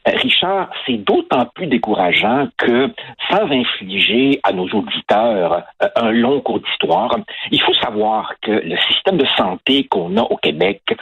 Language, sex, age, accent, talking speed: French, male, 60-79, French, 150 wpm